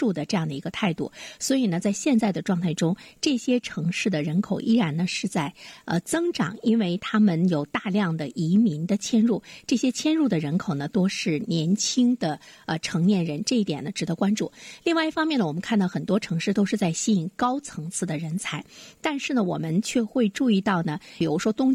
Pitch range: 170-235 Hz